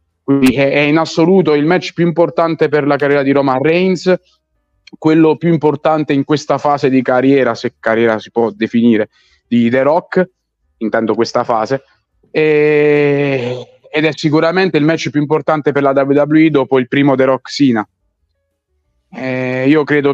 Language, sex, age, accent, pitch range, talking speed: Italian, male, 30-49, native, 130-150 Hz, 155 wpm